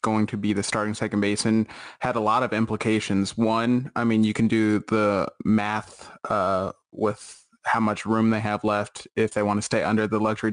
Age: 20-39